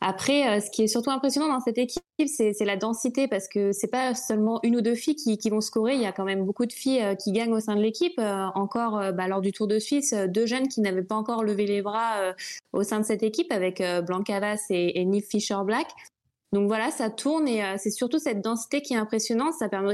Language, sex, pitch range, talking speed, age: French, female, 200-245 Hz, 255 wpm, 20-39